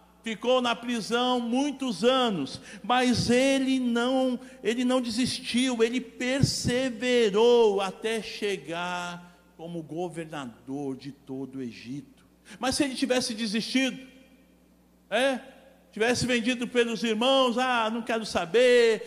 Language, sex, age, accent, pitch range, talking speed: Portuguese, male, 50-69, Brazilian, 215-275 Hz, 110 wpm